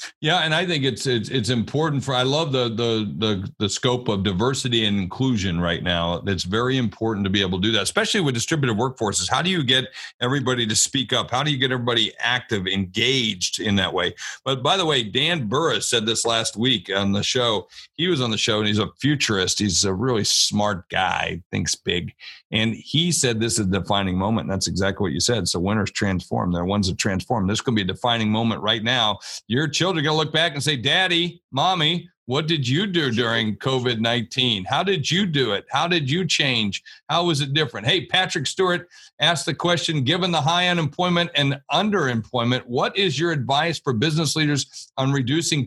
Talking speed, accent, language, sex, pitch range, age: 215 wpm, American, English, male, 105-150 Hz, 50-69